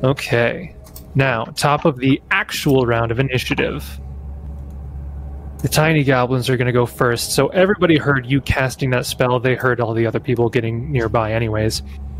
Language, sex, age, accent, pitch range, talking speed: English, male, 20-39, American, 110-140 Hz, 160 wpm